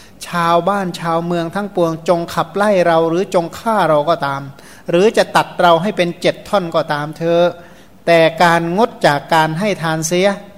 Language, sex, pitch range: Thai, male, 155-185 Hz